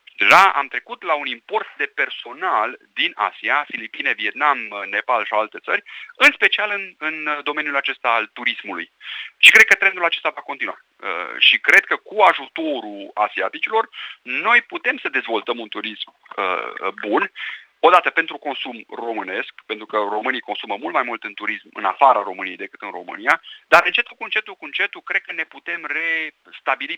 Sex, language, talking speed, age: male, Romanian, 165 wpm, 30-49